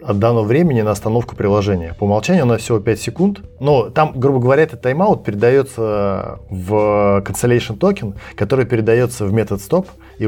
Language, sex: Russian, male